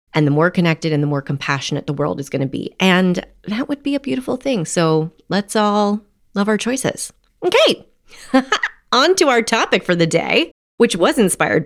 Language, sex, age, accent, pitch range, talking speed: English, female, 30-49, American, 160-255 Hz, 195 wpm